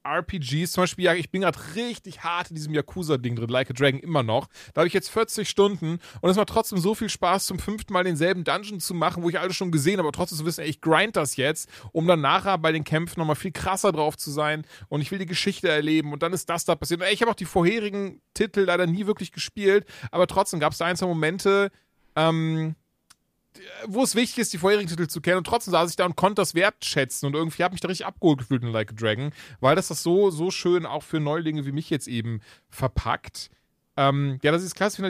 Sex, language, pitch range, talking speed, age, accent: male, German, 150-195 Hz, 250 wpm, 30-49, German